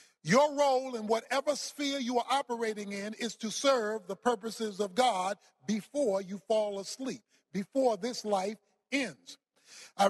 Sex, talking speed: male, 150 wpm